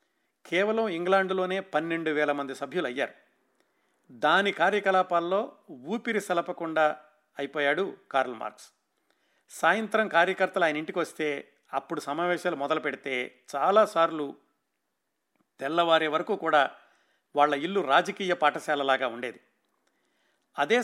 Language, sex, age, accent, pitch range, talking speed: Telugu, male, 50-69, native, 155-195 Hz, 95 wpm